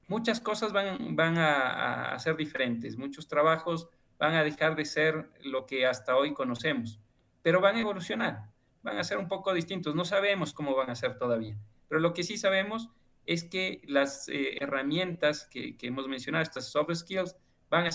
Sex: male